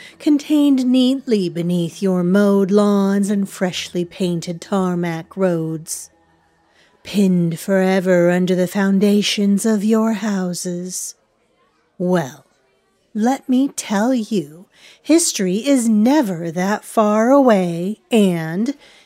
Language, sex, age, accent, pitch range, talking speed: English, female, 40-59, American, 170-215 Hz, 100 wpm